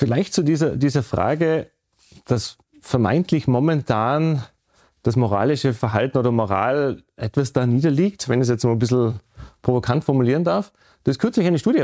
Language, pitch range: German, 125-160 Hz